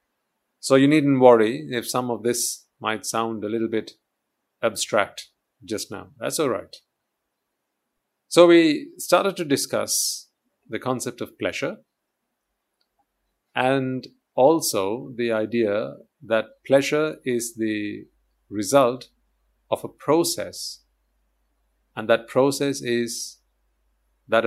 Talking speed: 110 wpm